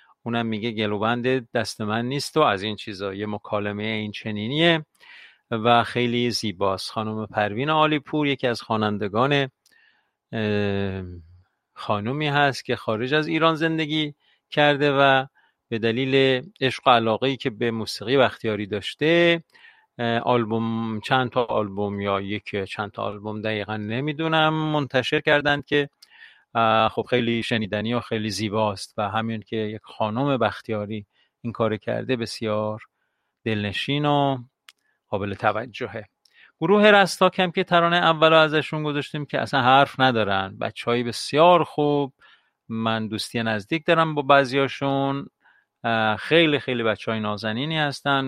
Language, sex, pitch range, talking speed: Persian, male, 110-140 Hz, 125 wpm